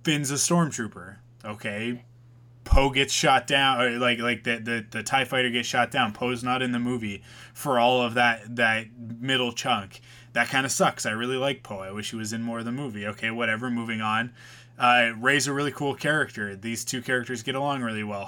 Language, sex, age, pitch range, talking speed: English, male, 20-39, 115-135 Hz, 215 wpm